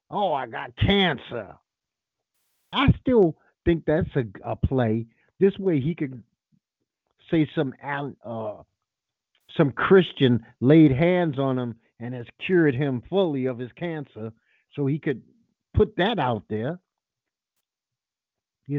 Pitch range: 120-190 Hz